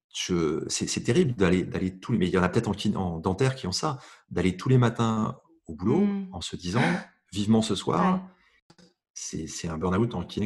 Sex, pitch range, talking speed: male, 85-115 Hz, 220 wpm